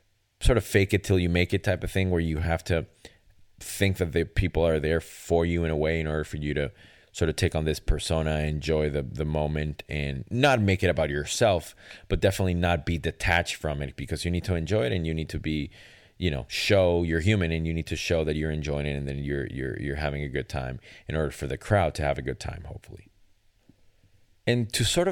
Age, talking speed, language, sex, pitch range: 30-49, 245 wpm, English, male, 80-100 Hz